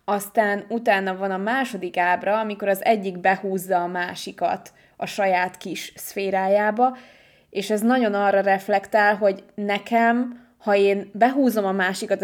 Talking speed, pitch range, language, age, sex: 135 wpm, 190-235 Hz, Hungarian, 20-39, female